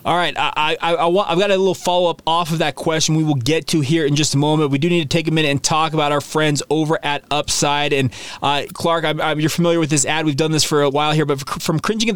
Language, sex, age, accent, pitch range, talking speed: English, male, 30-49, American, 145-180 Hz, 265 wpm